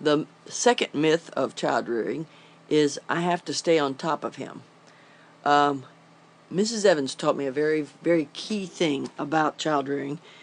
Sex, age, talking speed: female, 50-69, 160 wpm